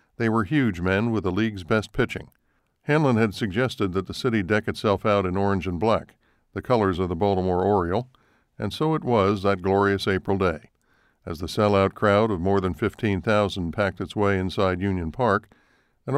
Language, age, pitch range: English, 60-79, 95-115 Hz